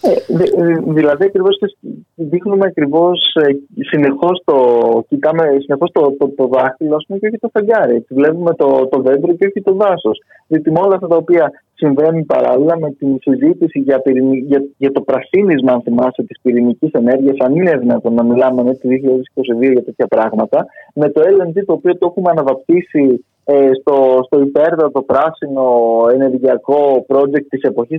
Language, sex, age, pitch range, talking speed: Greek, male, 20-39, 130-170 Hz, 150 wpm